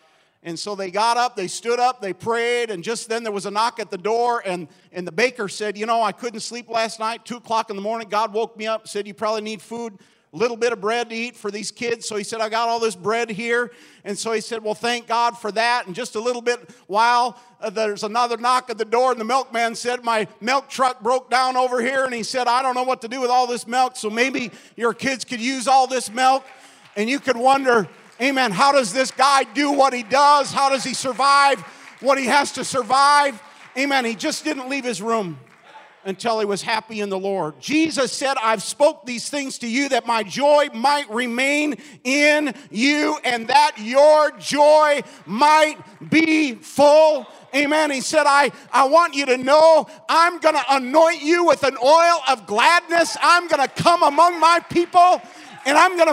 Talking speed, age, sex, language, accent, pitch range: 220 wpm, 50-69, male, English, American, 225-285 Hz